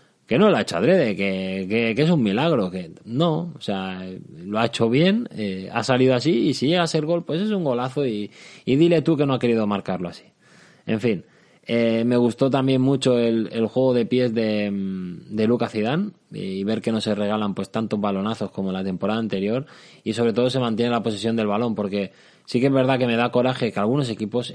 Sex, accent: male, Spanish